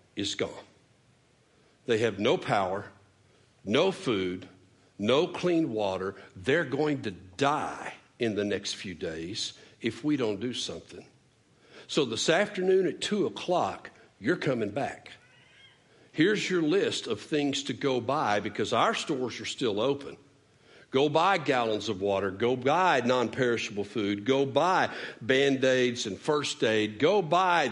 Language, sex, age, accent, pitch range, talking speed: English, male, 60-79, American, 110-170 Hz, 140 wpm